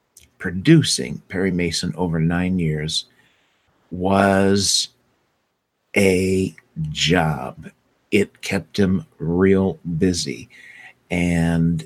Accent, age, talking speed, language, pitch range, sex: American, 50-69, 75 wpm, English, 85-110 Hz, male